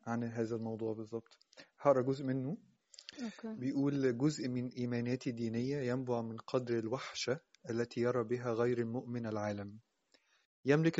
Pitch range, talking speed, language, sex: 120-135 Hz, 125 wpm, Arabic, male